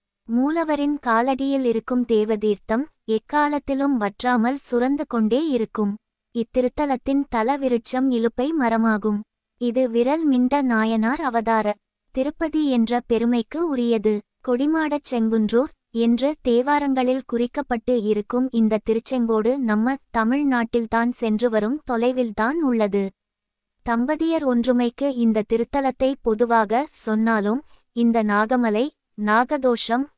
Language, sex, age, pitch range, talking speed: Tamil, female, 20-39, 225-265 Hz, 90 wpm